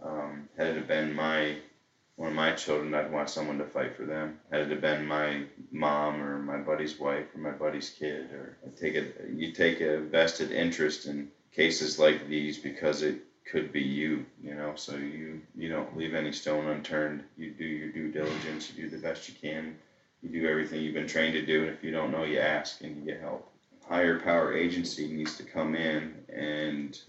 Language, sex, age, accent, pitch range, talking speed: English, male, 30-49, American, 75-80 Hz, 210 wpm